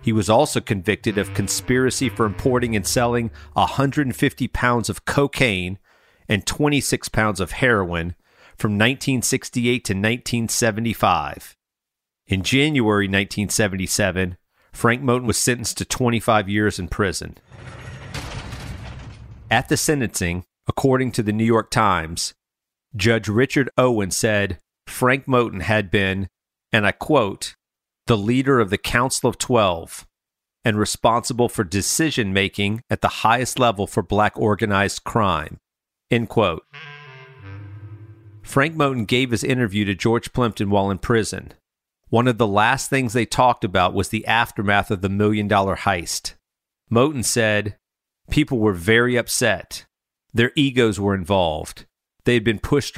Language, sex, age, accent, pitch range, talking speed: English, male, 40-59, American, 100-125 Hz, 130 wpm